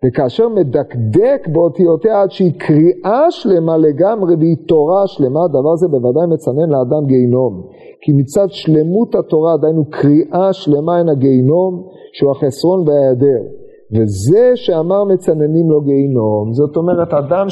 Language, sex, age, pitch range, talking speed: Hebrew, male, 40-59, 145-195 Hz, 130 wpm